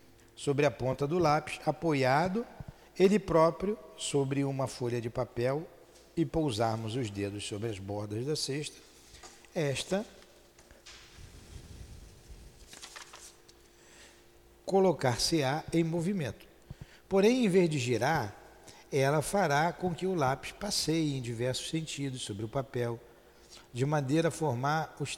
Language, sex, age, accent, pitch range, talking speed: Portuguese, male, 60-79, Brazilian, 125-165 Hz, 115 wpm